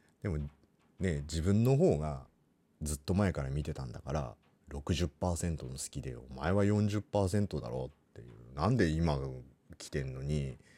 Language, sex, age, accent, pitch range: Japanese, male, 40-59, native, 70-85 Hz